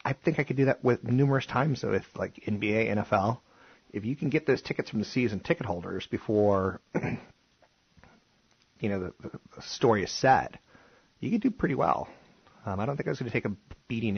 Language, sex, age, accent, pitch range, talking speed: English, male, 30-49, American, 85-120 Hz, 205 wpm